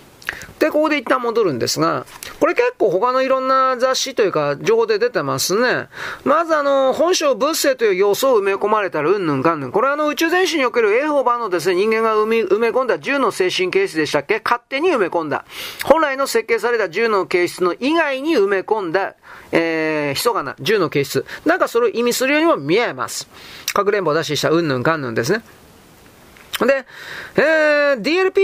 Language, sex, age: Japanese, male, 40-59